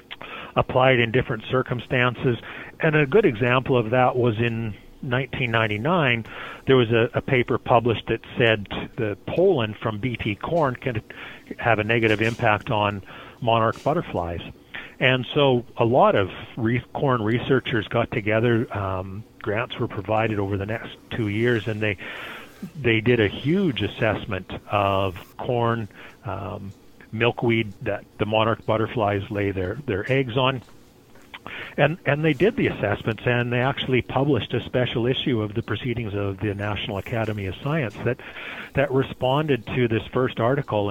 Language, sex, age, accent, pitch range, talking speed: English, male, 40-59, American, 105-130 Hz, 150 wpm